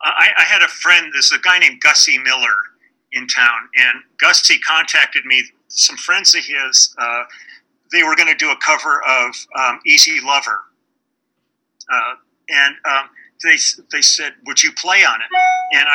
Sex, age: male, 50-69